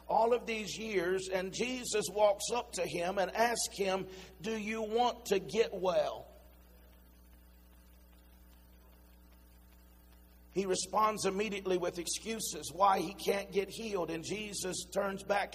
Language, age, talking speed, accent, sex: English, 50-69, 125 wpm, American, male